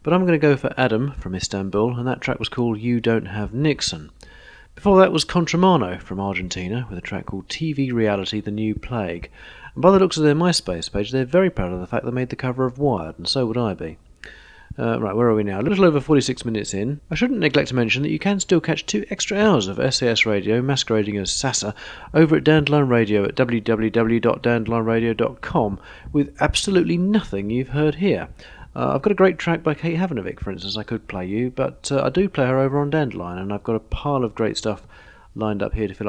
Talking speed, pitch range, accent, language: 230 wpm, 105-150 Hz, British, English